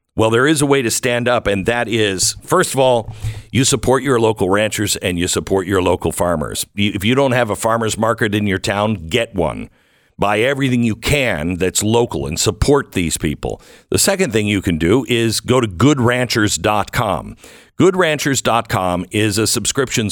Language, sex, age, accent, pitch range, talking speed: English, male, 50-69, American, 100-135 Hz, 180 wpm